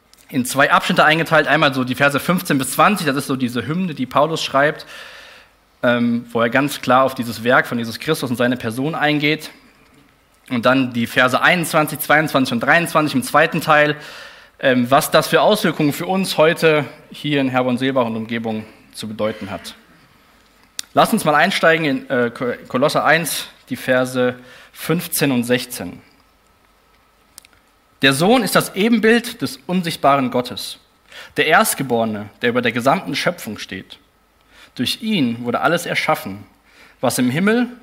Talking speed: 155 wpm